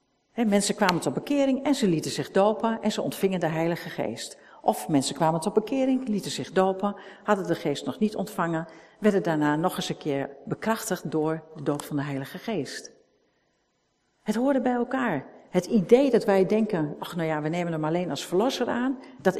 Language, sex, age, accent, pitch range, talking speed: Dutch, female, 50-69, Dutch, 155-225 Hz, 195 wpm